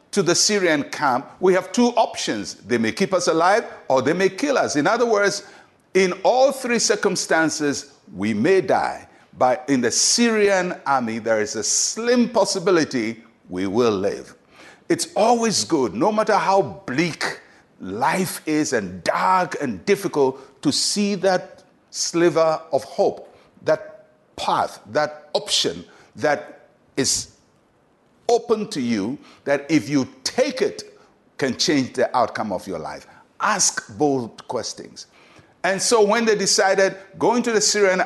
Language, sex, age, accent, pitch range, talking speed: English, male, 60-79, Nigerian, 150-225 Hz, 145 wpm